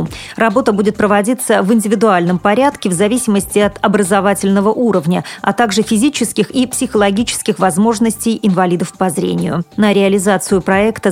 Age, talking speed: 30-49, 125 wpm